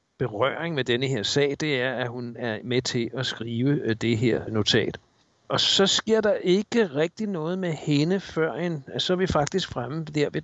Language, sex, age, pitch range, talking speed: Danish, male, 60-79, 125-165 Hz, 205 wpm